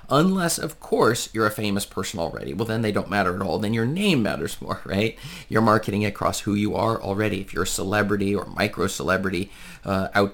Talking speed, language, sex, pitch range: 205 wpm, English, male, 105-140 Hz